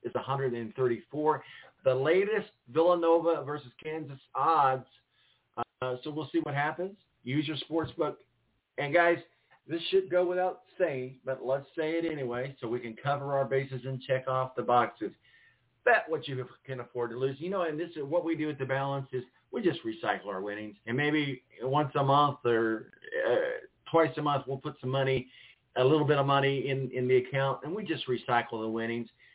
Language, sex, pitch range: English, male, 120-160 Hz